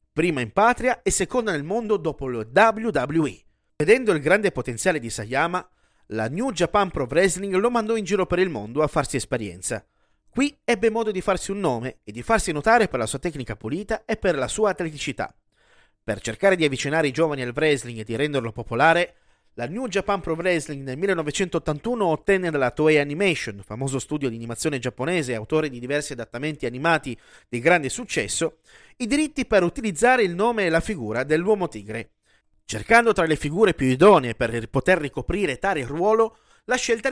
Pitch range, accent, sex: 135-205 Hz, native, male